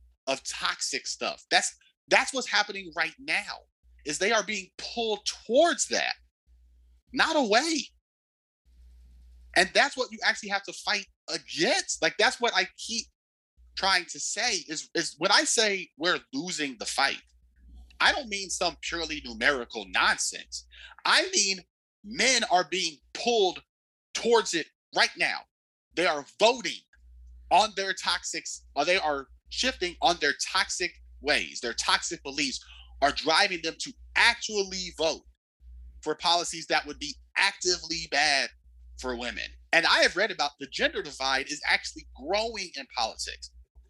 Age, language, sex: 30-49, English, male